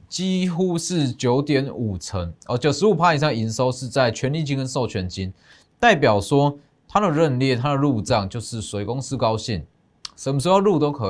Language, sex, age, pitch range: Chinese, male, 20-39, 100-150 Hz